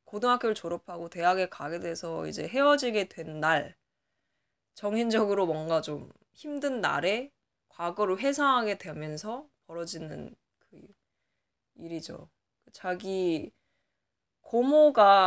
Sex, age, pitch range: female, 20-39, 180-275 Hz